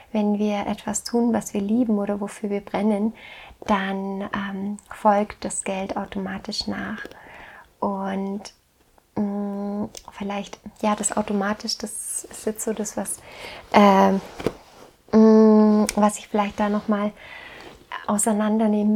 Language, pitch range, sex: German, 205-225 Hz, female